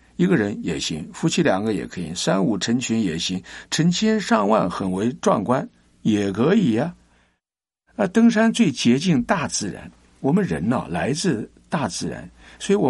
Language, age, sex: Chinese, 60-79, male